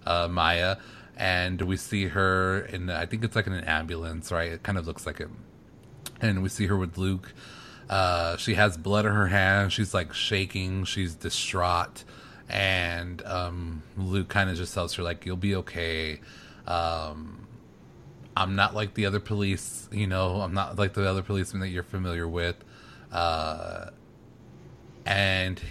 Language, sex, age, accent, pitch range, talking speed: English, male, 30-49, American, 85-100 Hz, 170 wpm